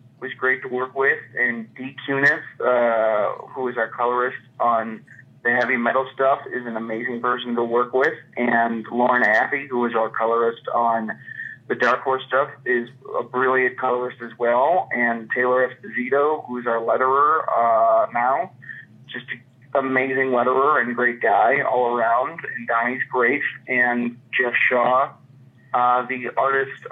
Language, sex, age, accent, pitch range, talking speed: English, male, 30-49, American, 120-135 Hz, 155 wpm